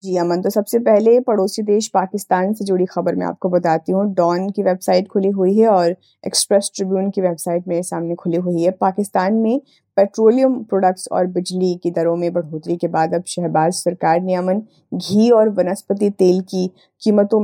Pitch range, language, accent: 175-205 Hz, Hindi, native